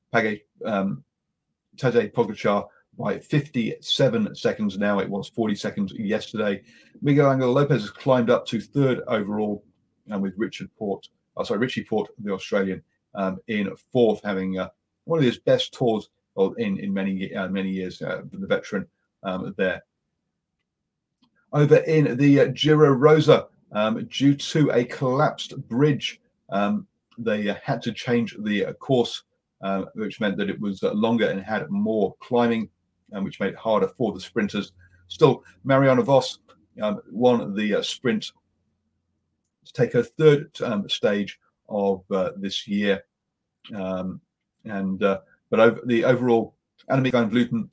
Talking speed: 155 wpm